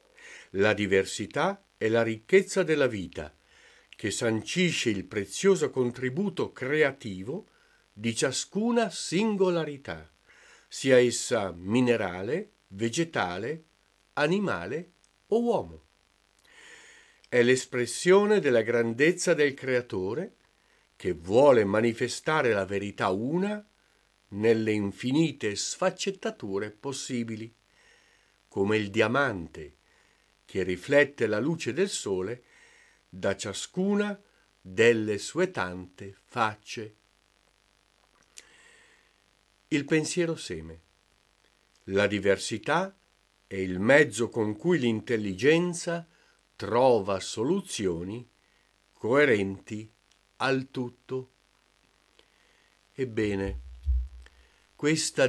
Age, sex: 50-69, male